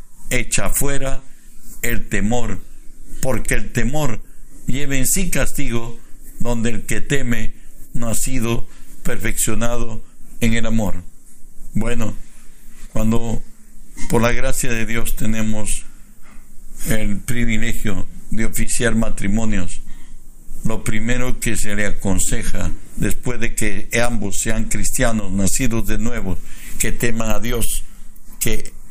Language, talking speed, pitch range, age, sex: Spanish, 115 wpm, 100-115 Hz, 60-79, male